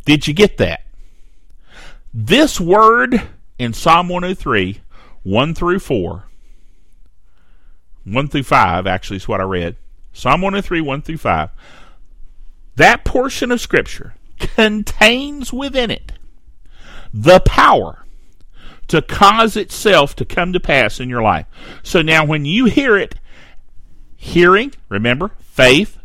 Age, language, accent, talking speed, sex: 50-69, English, American, 125 wpm, male